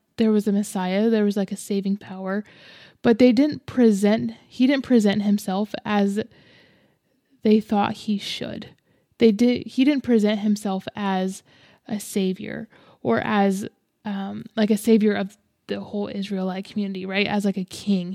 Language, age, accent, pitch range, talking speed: English, 10-29, American, 200-225 Hz, 160 wpm